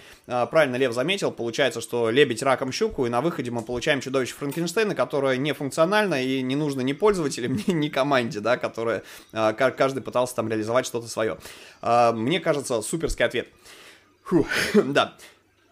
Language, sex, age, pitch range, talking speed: Russian, male, 20-39, 115-140 Hz, 150 wpm